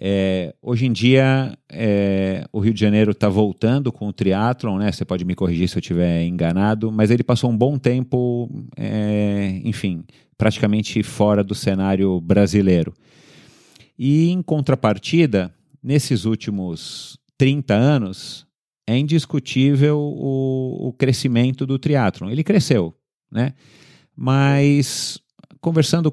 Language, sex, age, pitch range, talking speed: Portuguese, male, 40-59, 90-130 Hz, 125 wpm